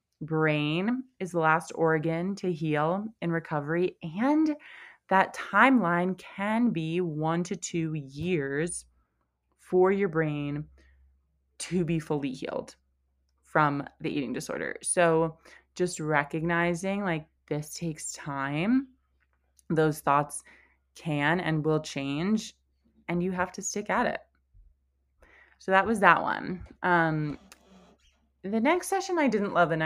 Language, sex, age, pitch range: English, female, 20-39, 145-190 Hz